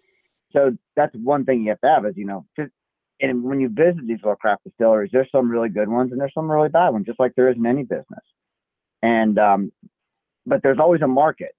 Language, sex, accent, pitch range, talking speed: English, male, American, 100-130 Hz, 235 wpm